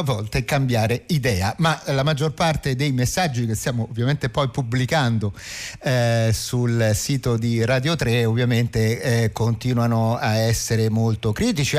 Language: Italian